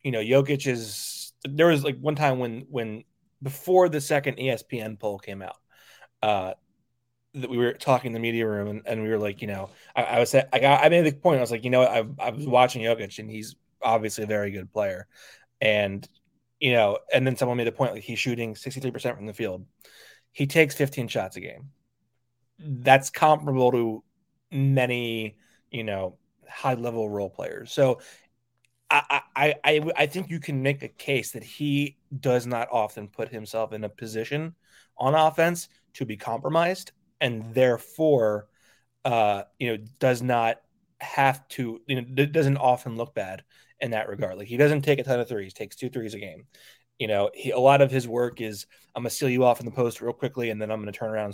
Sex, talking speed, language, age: male, 205 wpm, English, 20-39